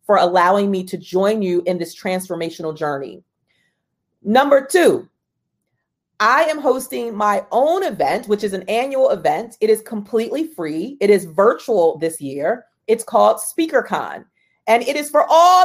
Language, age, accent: English, 40-59, American